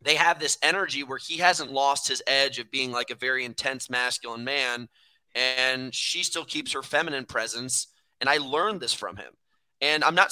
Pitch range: 125-150 Hz